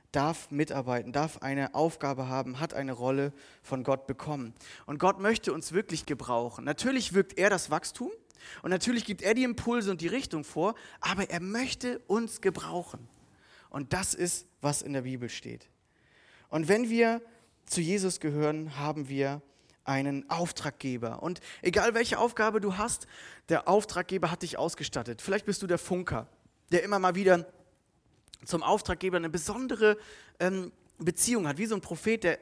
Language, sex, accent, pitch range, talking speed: German, male, German, 150-205 Hz, 160 wpm